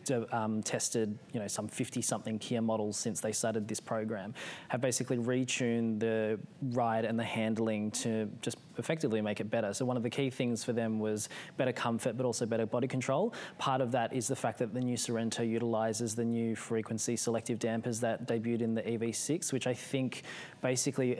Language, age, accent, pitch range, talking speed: English, 20-39, Australian, 110-125 Hz, 195 wpm